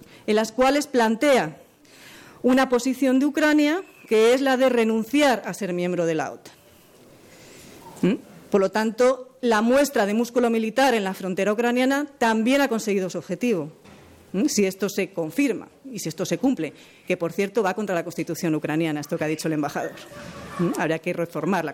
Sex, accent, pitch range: female, Spanish, 180-245 Hz